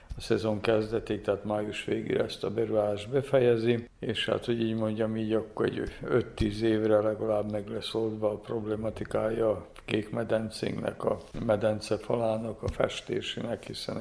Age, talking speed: 50-69, 145 wpm